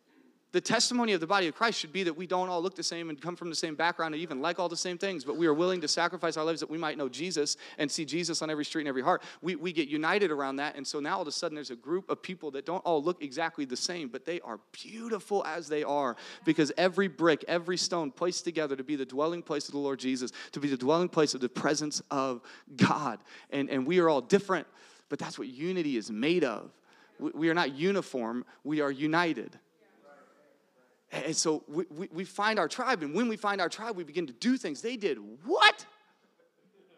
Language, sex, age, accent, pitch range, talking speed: English, male, 30-49, American, 160-235 Hz, 245 wpm